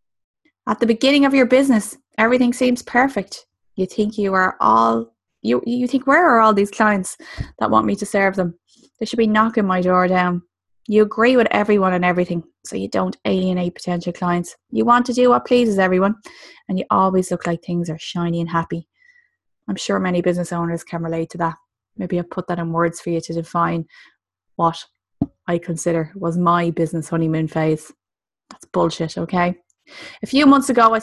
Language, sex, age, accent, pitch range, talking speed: English, female, 20-39, Irish, 170-215 Hz, 190 wpm